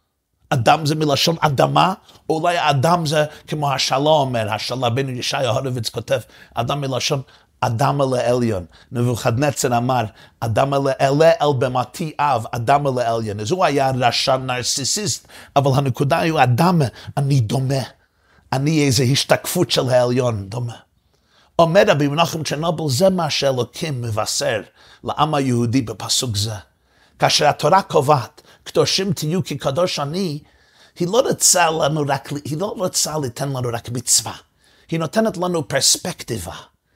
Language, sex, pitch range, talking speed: Hebrew, male, 120-155 Hz, 125 wpm